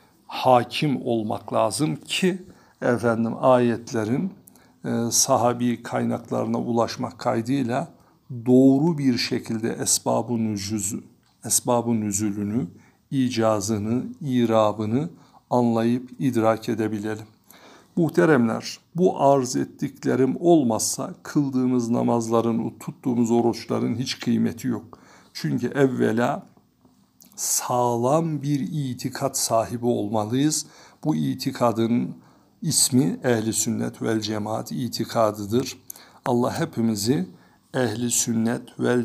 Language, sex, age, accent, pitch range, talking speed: Turkish, male, 60-79, native, 110-130 Hz, 80 wpm